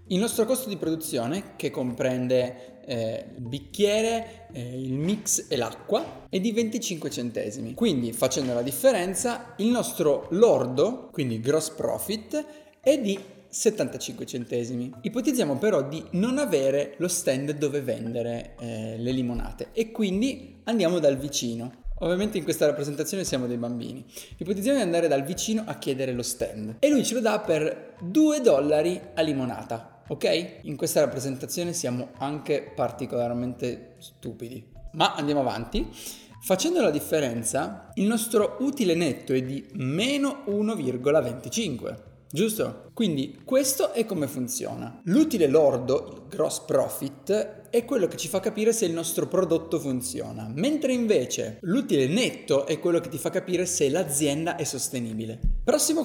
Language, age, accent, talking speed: Italian, 20-39, native, 145 wpm